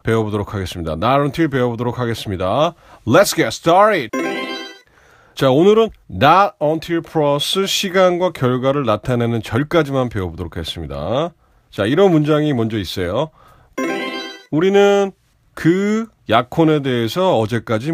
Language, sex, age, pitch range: Korean, male, 40-59, 110-165 Hz